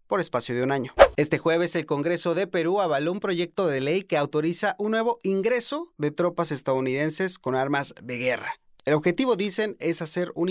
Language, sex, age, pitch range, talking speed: Spanish, male, 30-49, 165-255 Hz, 195 wpm